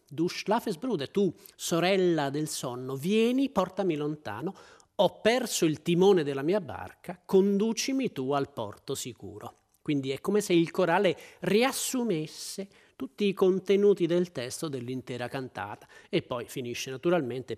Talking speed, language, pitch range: 130 wpm, Italian, 130-185 Hz